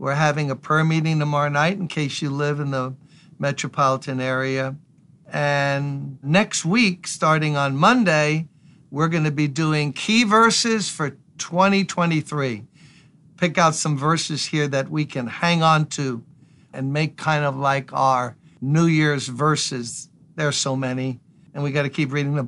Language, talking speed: English, 165 wpm